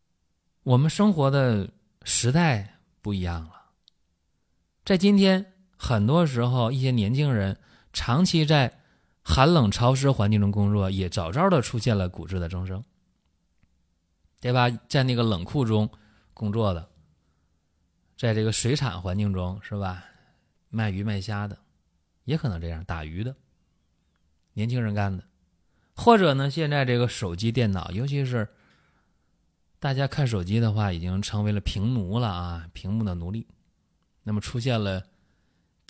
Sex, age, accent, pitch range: male, 20-39, native, 90-135 Hz